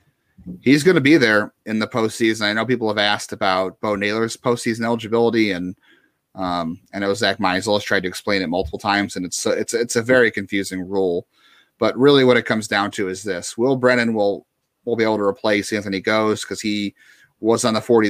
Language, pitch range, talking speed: English, 95-115 Hz, 220 wpm